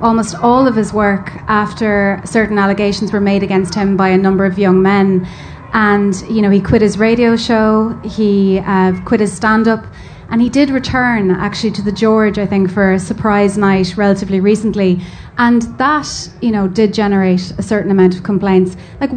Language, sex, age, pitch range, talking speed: English, female, 30-49, 200-240 Hz, 190 wpm